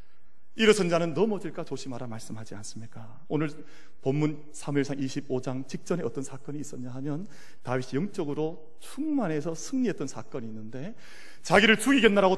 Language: Korean